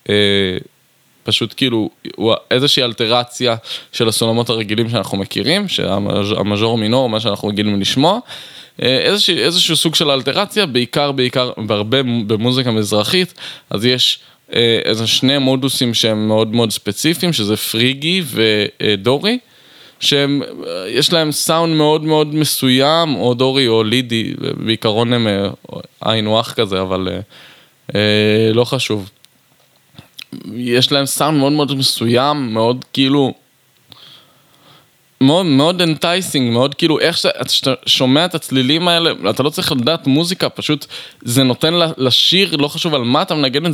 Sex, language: male, Hebrew